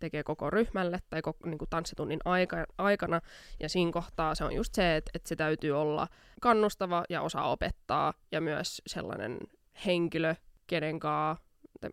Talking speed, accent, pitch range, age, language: 150 wpm, native, 160-190 Hz, 20-39, Finnish